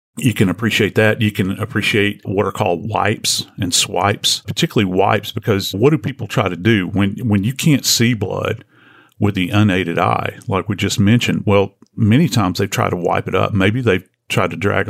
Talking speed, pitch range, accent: 200 wpm, 95-115 Hz, American